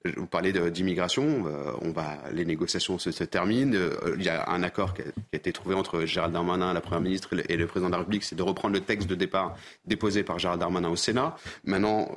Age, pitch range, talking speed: 30-49, 95-115 Hz, 240 wpm